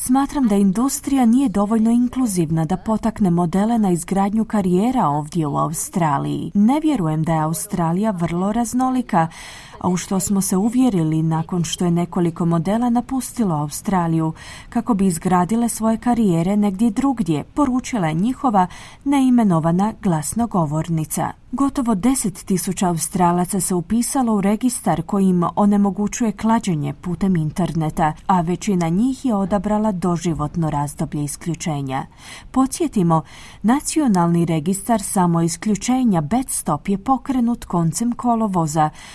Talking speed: 120 wpm